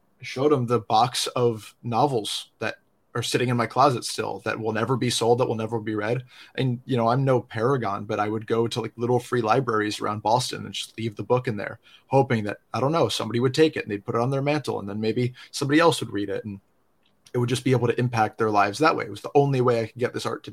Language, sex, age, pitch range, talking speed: English, male, 20-39, 110-130 Hz, 275 wpm